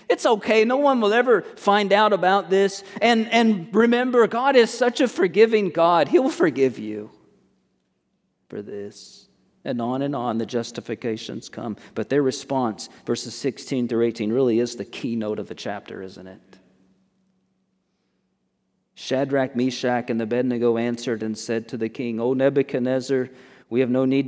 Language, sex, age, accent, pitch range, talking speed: English, male, 40-59, American, 115-145 Hz, 155 wpm